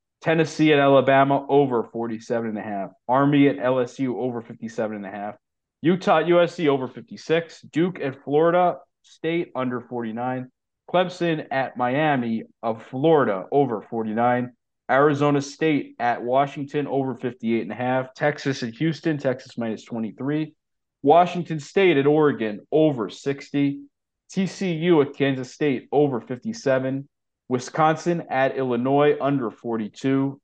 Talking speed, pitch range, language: 110 wpm, 120-155 Hz, English